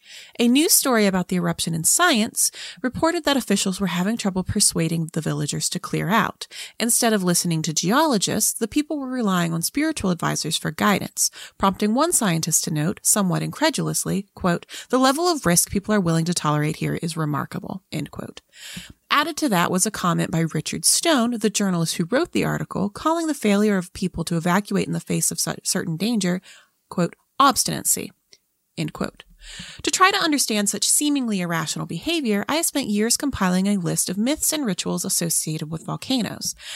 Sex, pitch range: female, 175-260 Hz